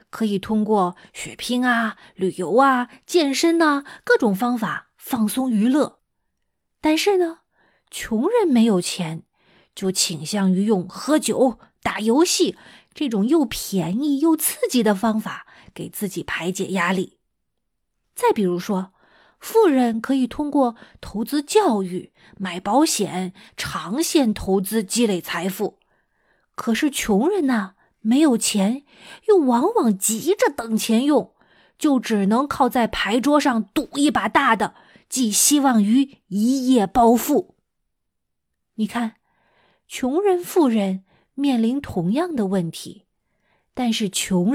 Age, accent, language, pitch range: 20-39, native, Chinese, 195-270 Hz